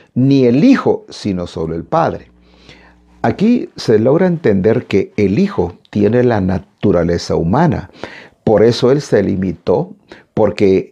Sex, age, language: male, 50-69, Spanish